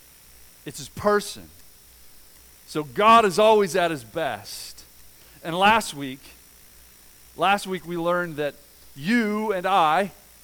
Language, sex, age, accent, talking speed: English, male, 40-59, American, 120 wpm